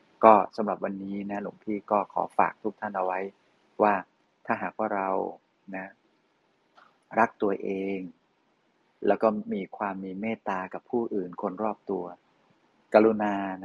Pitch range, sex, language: 95-120 Hz, male, Thai